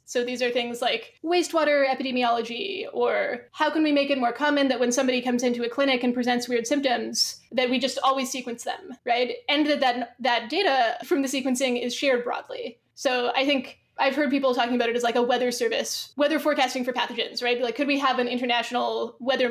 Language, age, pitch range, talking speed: English, 20-39, 245-285 Hz, 215 wpm